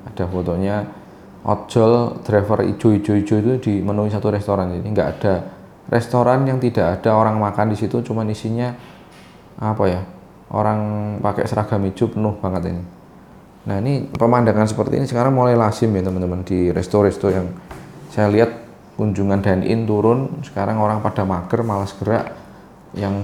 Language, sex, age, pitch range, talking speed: Indonesian, male, 20-39, 95-110 Hz, 145 wpm